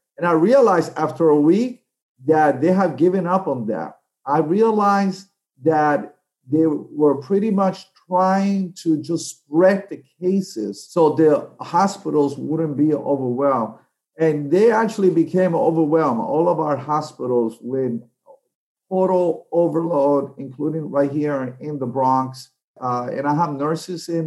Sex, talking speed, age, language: male, 140 wpm, 50-69, English